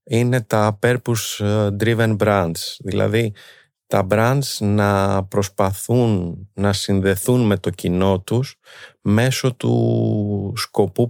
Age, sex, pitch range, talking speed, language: 30-49, male, 100-120 Hz, 105 wpm, Greek